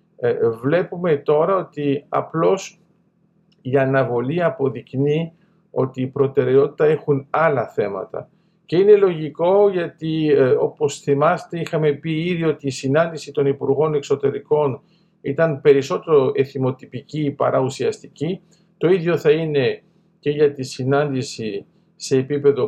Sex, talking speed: male, 120 wpm